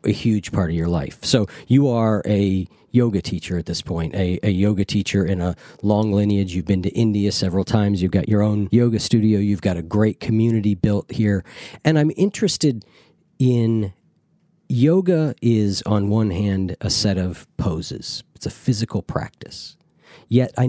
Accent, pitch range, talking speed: American, 95-125 Hz, 175 wpm